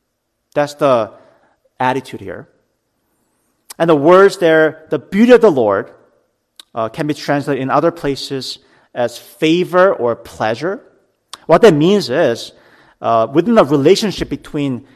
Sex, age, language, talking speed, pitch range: male, 40-59, English, 130 wpm, 130-175 Hz